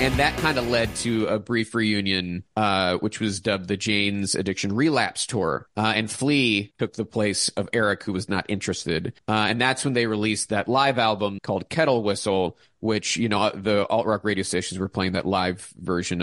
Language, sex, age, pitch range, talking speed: English, male, 30-49, 100-125 Hz, 200 wpm